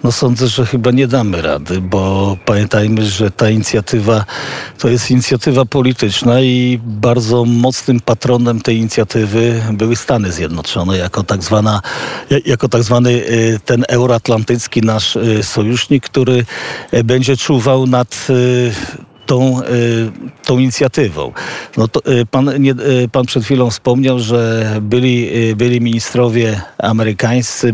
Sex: male